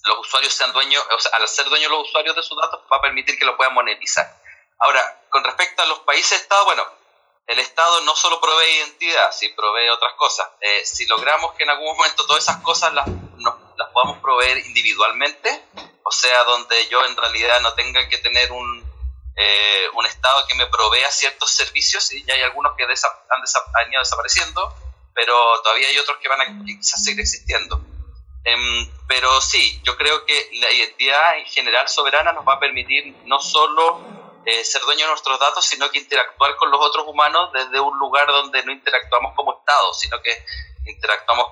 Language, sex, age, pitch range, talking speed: Spanish, male, 30-49, 115-150 Hz, 200 wpm